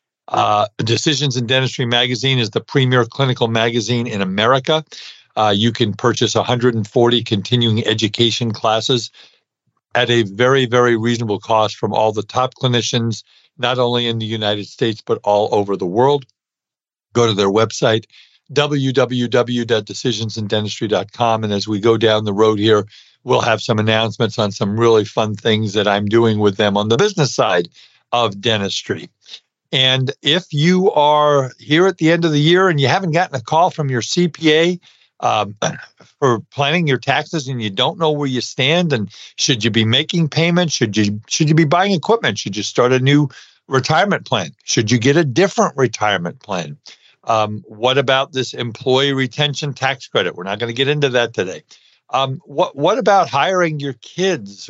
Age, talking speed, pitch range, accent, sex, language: 50-69, 170 wpm, 110-145 Hz, American, male, English